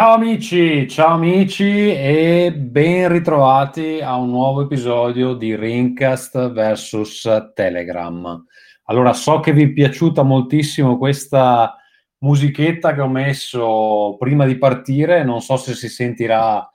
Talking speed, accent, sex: 125 wpm, native, male